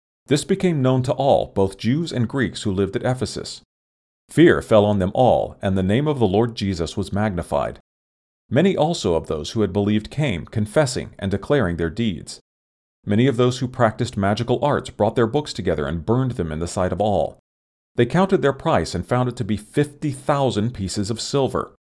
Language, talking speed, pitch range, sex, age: English, 195 wpm, 95-130 Hz, male, 40-59